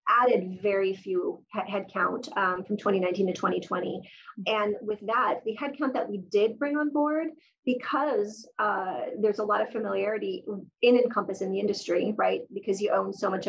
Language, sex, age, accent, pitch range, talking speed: English, female, 30-49, American, 195-260 Hz, 170 wpm